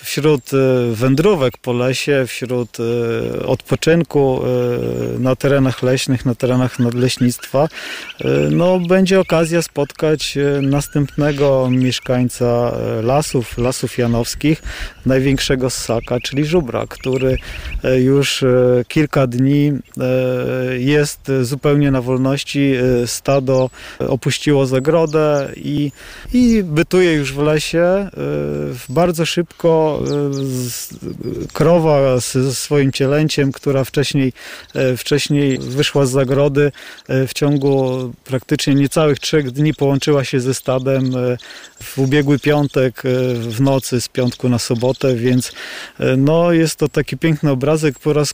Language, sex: Polish, male